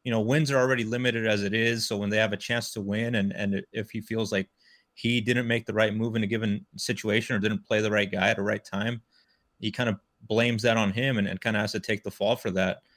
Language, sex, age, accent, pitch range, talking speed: English, male, 30-49, American, 100-115 Hz, 280 wpm